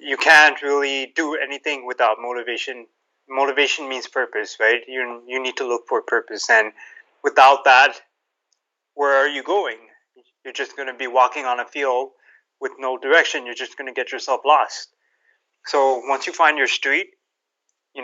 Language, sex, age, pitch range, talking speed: English, male, 20-39, 125-180 Hz, 170 wpm